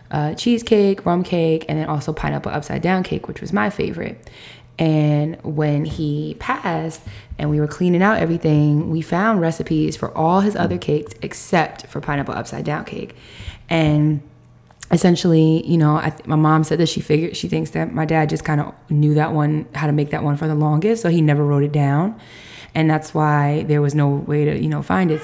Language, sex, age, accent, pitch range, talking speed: English, female, 20-39, American, 145-160 Hz, 210 wpm